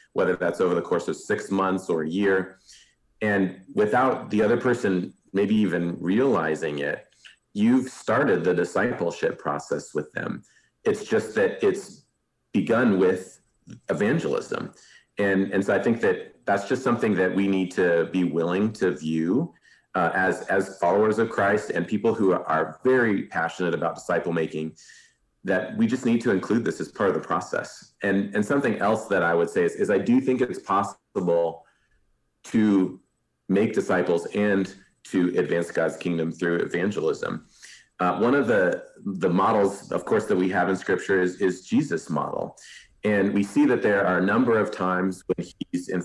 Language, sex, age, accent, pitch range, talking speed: English, male, 40-59, American, 90-115 Hz, 175 wpm